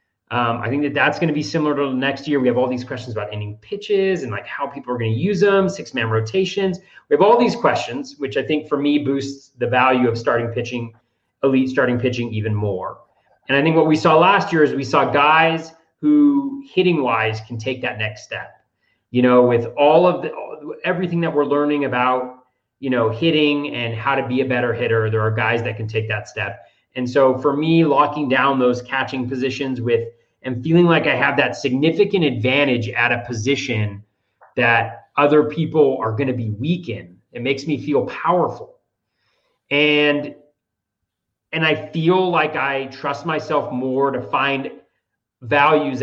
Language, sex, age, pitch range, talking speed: English, male, 30-49, 120-150 Hz, 195 wpm